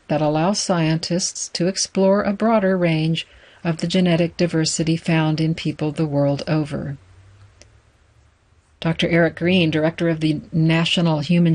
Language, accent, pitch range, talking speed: English, American, 155-190 Hz, 135 wpm